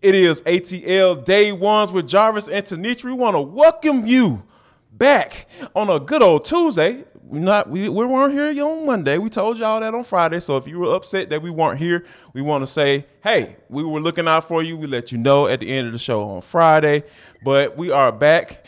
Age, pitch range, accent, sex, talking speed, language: 20-39, 125-190 Hz, American, male, 220 wpm, English